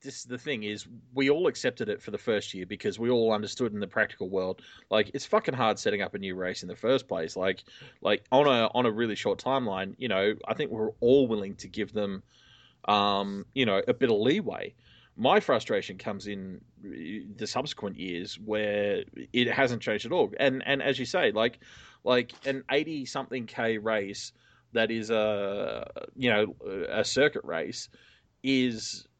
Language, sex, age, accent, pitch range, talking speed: English, male, 20-39, Australian, 105-130 Hz, 190 wpm